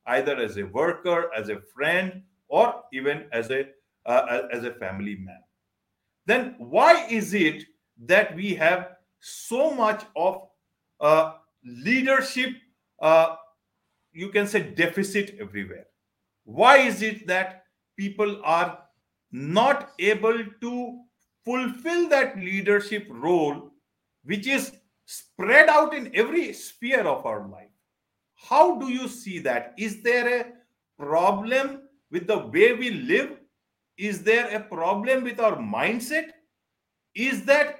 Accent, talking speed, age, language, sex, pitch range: Indian, 125 wpm, 50-69, English, male, 160-245 Hz